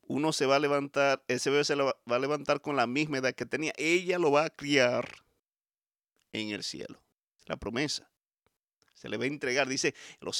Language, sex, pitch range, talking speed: Spanish, male, 120-155 Hz, 200 wpm